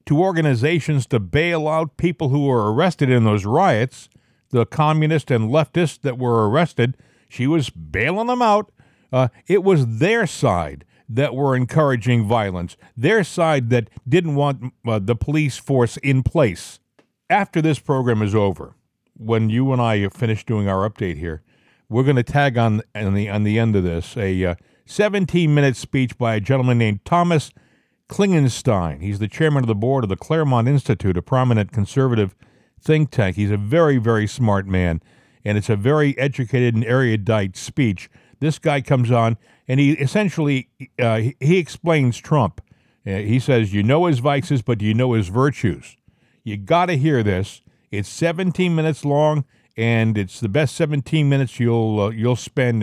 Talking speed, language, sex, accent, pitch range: 175 wpm, English, male, American, 110-145 Hz